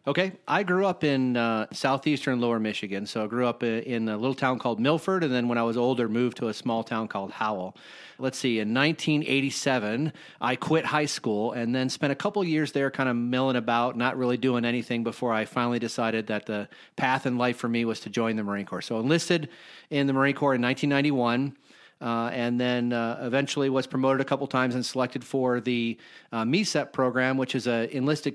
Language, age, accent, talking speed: English, 40-59, American, 215 wpm